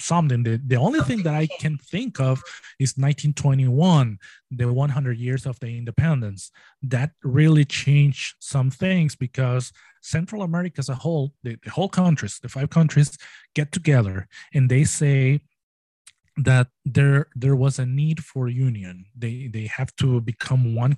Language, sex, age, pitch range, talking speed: English, male, 20-39, 125-145 Hz, 155 wpm